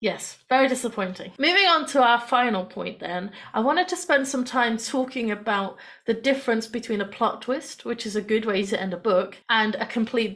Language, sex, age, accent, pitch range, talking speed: English, female, 30-49, British, 205-255 Hz, 210 wpm